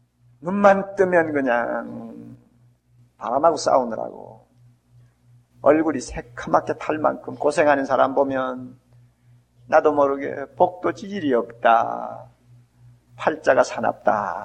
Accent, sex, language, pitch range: native, male, Korean, 120-160 Hz